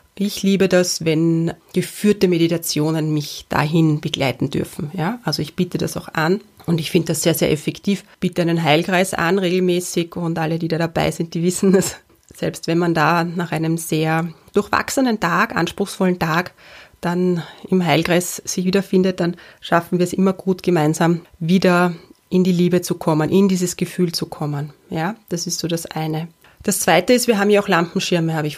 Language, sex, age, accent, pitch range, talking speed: German, female, 30-49, German, 165-190 Hz, 185 wpm